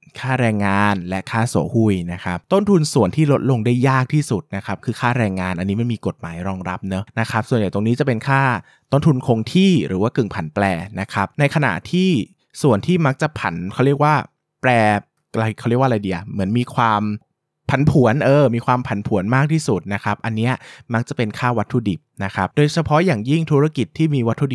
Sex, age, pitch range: male, 20-39, 100-135 Hz